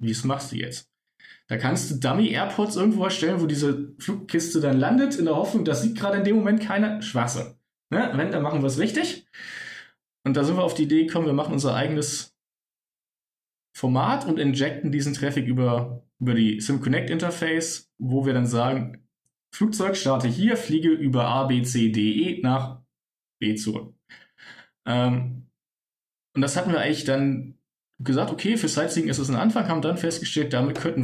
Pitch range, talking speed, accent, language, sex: 125-160 Hz, 170 wpm, German, German, male